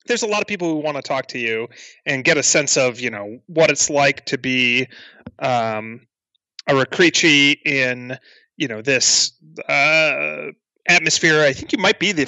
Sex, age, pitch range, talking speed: male, 30-49, 120-150 Hz, 185 wpm